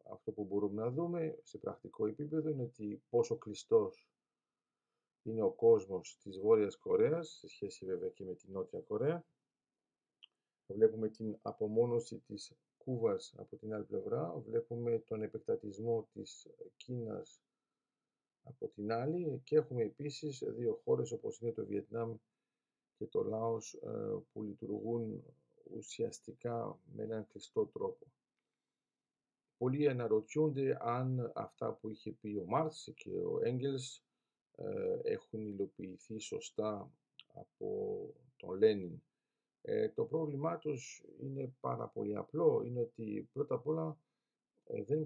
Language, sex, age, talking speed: Greek, male, 50-69, 125 wpm